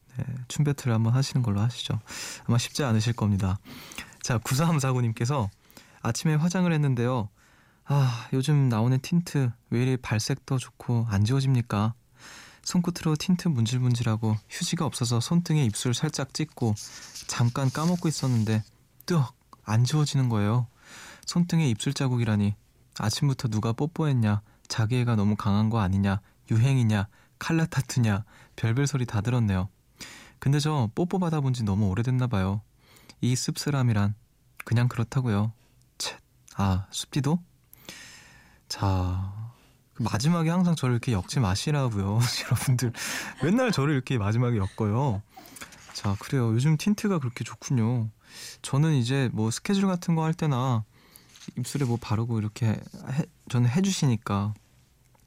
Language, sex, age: Korean, male, 20-39